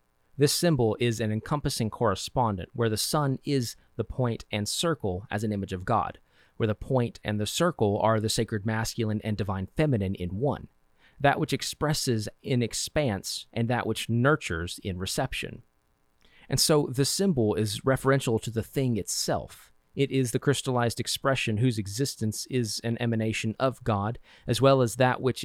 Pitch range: 105-130 Hz